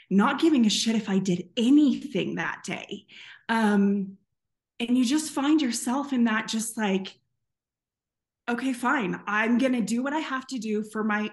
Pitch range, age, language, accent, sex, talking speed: 190-250 Hz, 20-39, English, American, female, 175 wpm